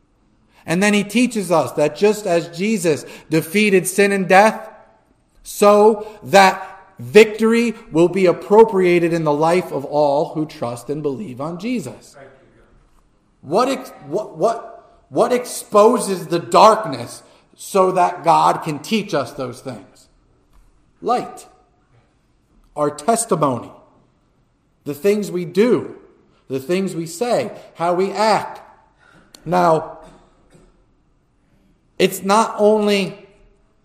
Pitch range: 145-195 Hz